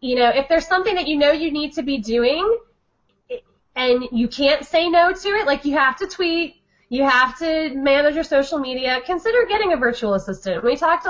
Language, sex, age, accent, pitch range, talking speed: English, female, 20-39, American, 220-315 Hz, 210 wpm